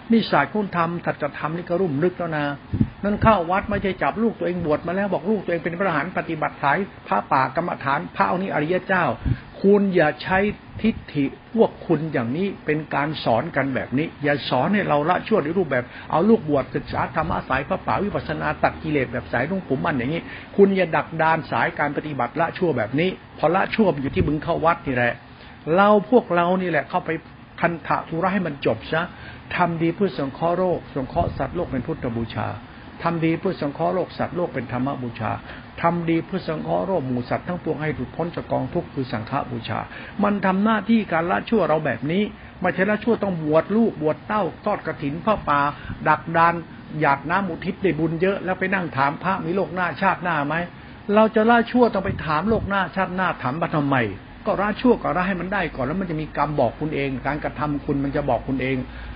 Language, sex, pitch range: Thai, male, 140-190 Hz